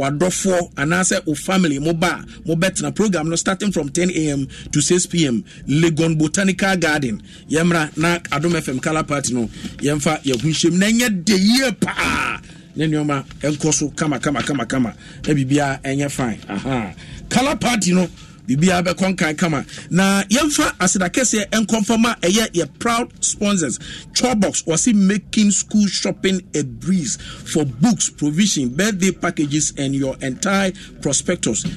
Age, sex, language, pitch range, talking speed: 50-69, male, English, 150-190 Hz, 145 wpm